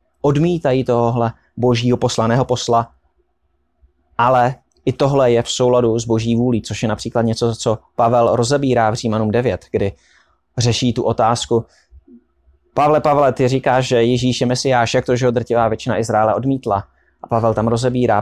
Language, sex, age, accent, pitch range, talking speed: Czech, male, 20-39, native, 110-130 Hz, 160 wpm